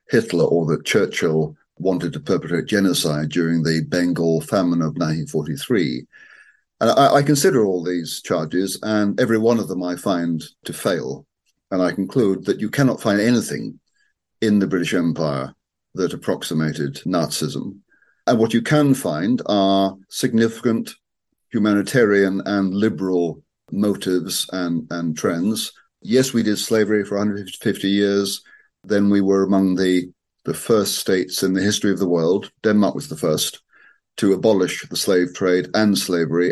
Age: 40-59